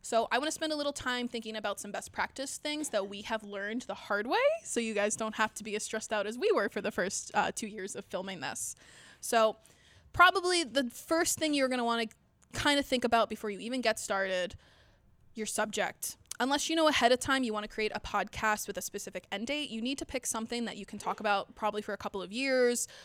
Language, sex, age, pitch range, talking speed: English, female, 20-39, 205-265 Hz, 255 wpm